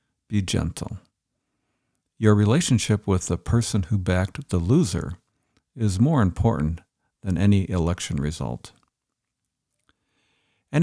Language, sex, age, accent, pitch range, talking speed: English, male, 50-69, American, 95-135 Hz, 105 wpm